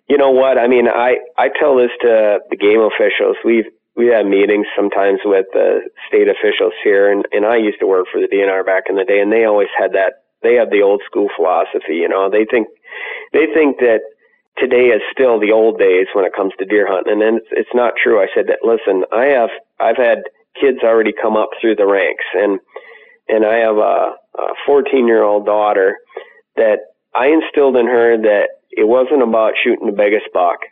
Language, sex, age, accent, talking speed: English, male, 40-59, American, 215 wpm